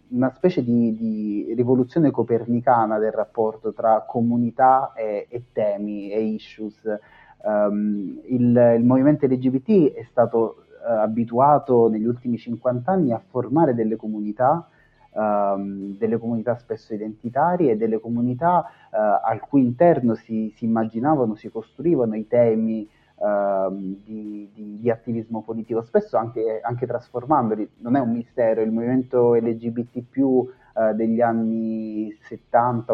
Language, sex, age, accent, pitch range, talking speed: Italian, male, 30-49, native, 110-125 Hz, 130 wpm